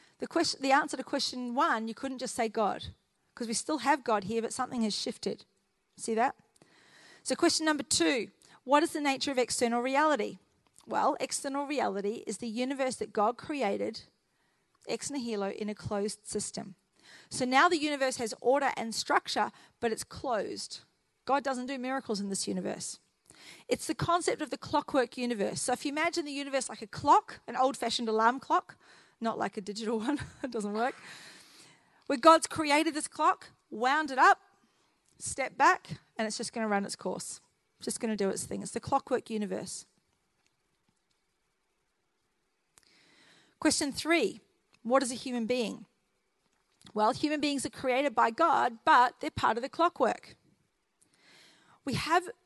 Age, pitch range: 40-59, 230-300 Hz